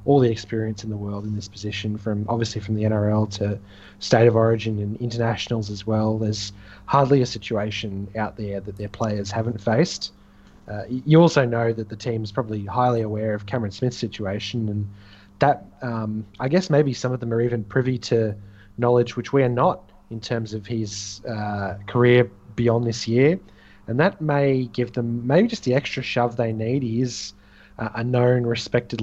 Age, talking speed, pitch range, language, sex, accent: 20-39, 190 wpm, 105-125 Hz, English, male, Australian